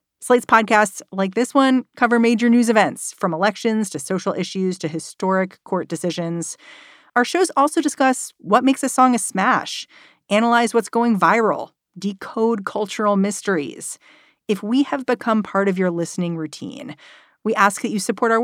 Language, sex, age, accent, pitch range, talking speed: English, female, 40-59, American, 155-225 Hz, 165 wpm